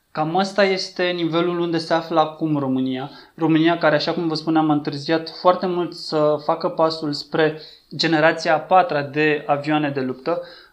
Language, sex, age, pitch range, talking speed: Romanian, male, 20-39, 145-165 Hz, 160 wpm